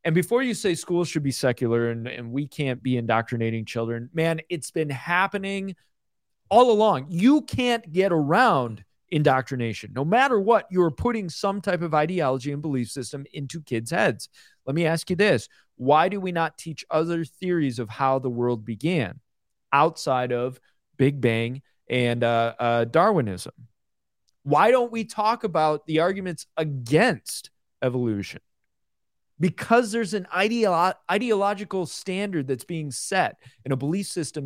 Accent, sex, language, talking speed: American, male, English, 155 wpm